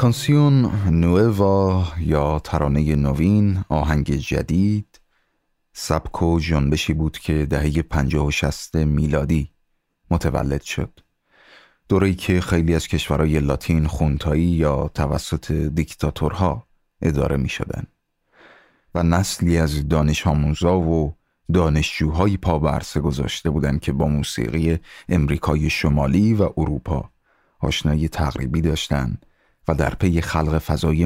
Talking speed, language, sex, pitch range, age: 105 wpm, Persian, male, 75-90 Hz, 30-49